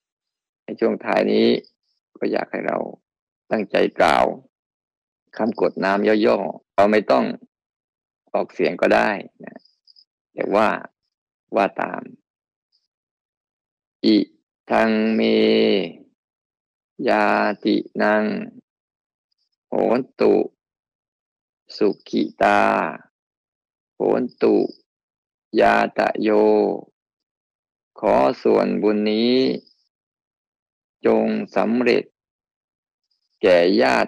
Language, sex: Thai, male